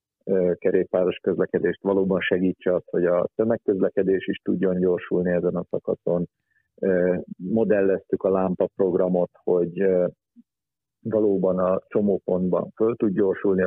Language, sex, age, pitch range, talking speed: Hungarian, male, 50-69, 95-110 Hz, 110 wpm